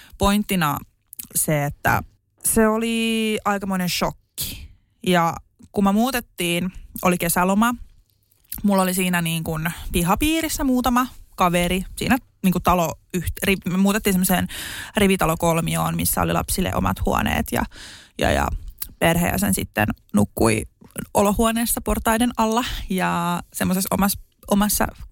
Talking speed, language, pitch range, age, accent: 110 wpm, Finnish, 165-210 Hz, 20-39, native